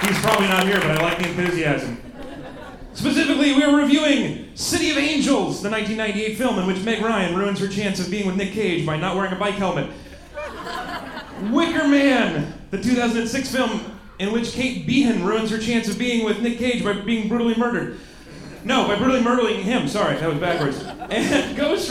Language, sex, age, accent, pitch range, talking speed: English, male, 30-49, American, 165-225 Hz, 190 wpm